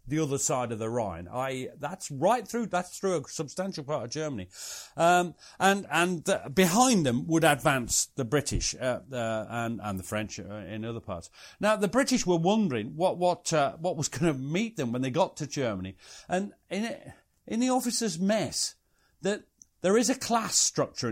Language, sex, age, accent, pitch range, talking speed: English, male, 40-59, British, 120-185 Hz, 195 wpm